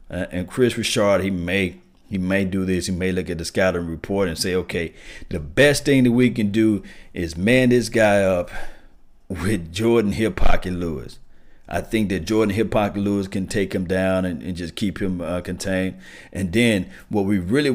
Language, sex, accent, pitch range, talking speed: English, male, American, 95-110 Hz, 195 wpm